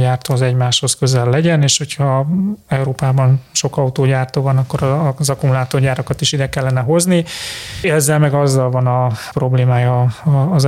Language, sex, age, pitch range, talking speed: Hungarian, male, 30-49, 130-145 Hz, 140 wpm